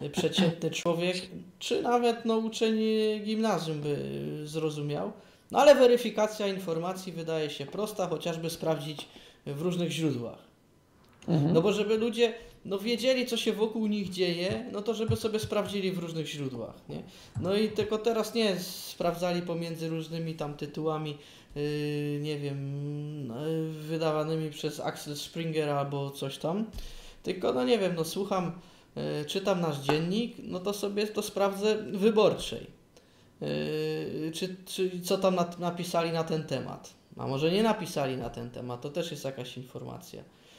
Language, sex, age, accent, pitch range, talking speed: Polish, male, 20-39, native, 150-205 Hz, 145 wpm